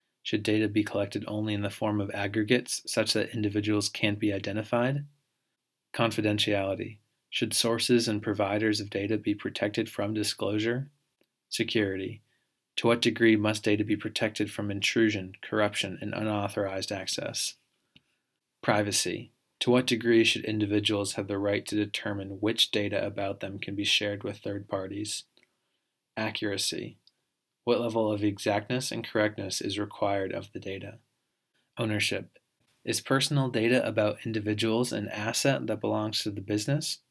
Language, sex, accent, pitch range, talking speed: English, male, American, 100-115 Hz, 140 wpm